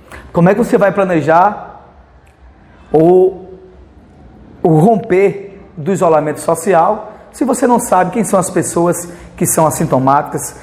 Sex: male